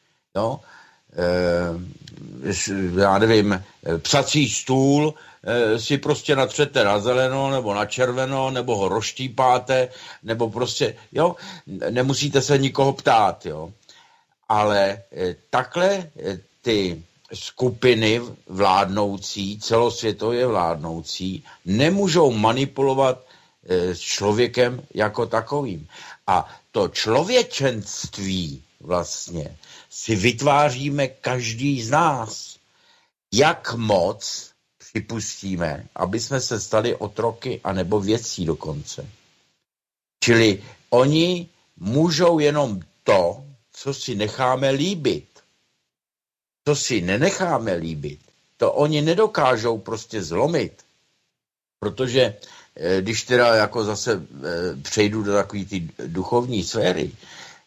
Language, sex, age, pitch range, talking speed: Slovak, male, 60-79, 100-135 Hz, 90 wpm